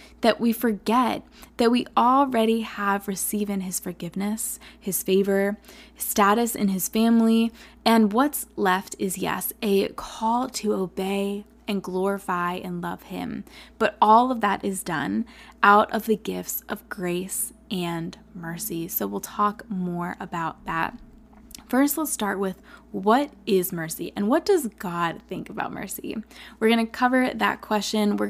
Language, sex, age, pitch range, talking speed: English, female, 20-39, 190-235 Hz, 150 wpm